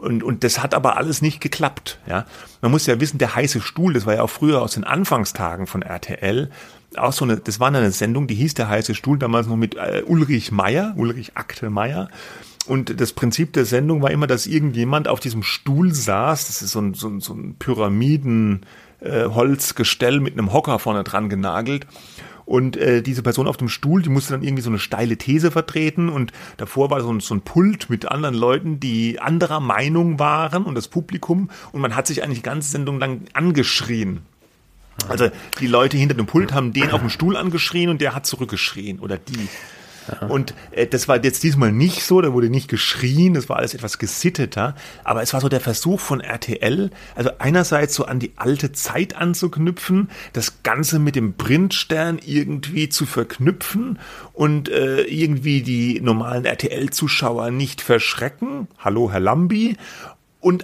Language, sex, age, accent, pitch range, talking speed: German, male, 30-49, German, 120-155 Hz, 190 wpm